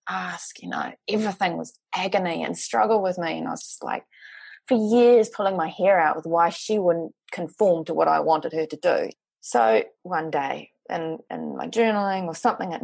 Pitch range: 170-255 Hz